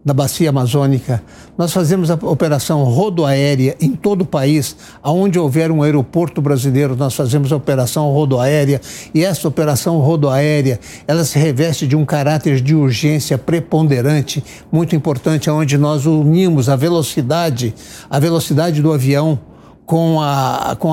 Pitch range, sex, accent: 135-165 Hz, male, Brazilian